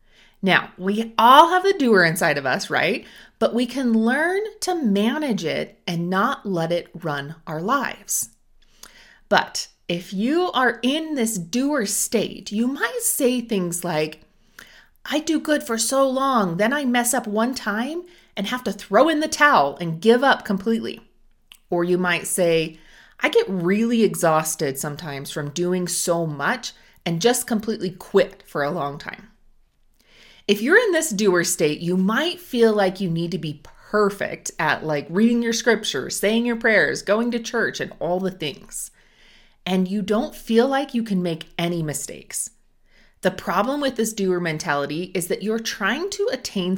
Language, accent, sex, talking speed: English, American, female, 170 wpm